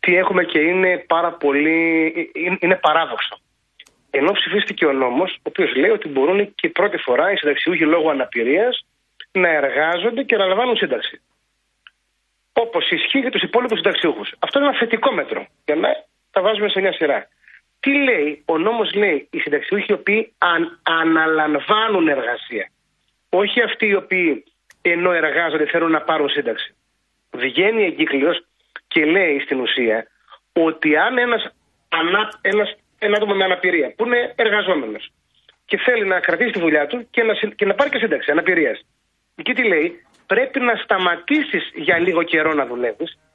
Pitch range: 170-245 Hz